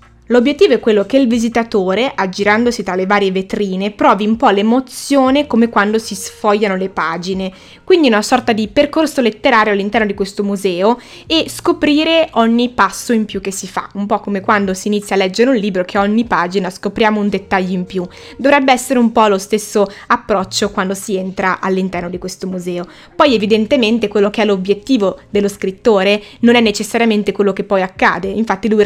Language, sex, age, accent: Italian, female, 20-39, native